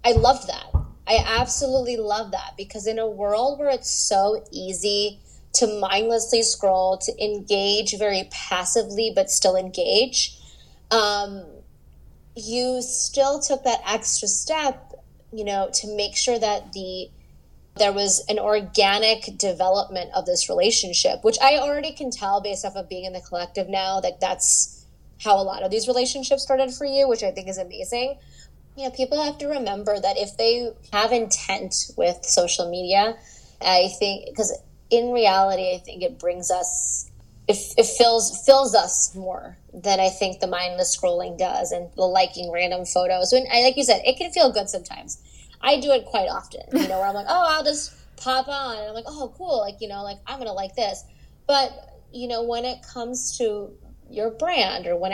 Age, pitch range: 20-39, 190-250 Hz